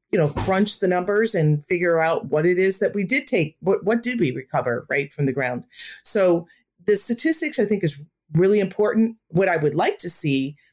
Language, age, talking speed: English, 40-59, 215 wpm